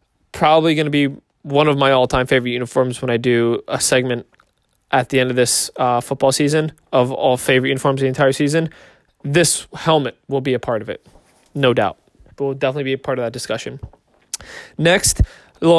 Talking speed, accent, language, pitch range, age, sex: 195 wpm, American, English, 130-155 Hz, 20-39, male